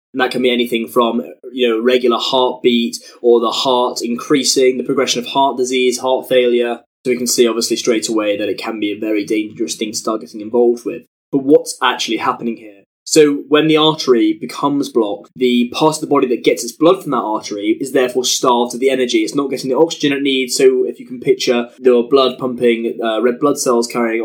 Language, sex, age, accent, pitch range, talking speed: English, male, 10-29, British, 120-145 Hz, 225 wpm